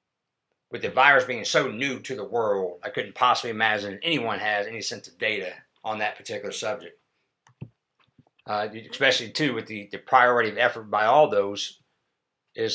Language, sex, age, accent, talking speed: English, male, 60-79, American, 170 wpm